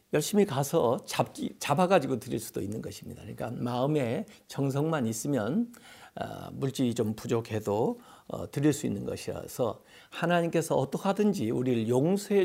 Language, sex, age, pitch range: Korean, male, 50-69, 120-190 Hz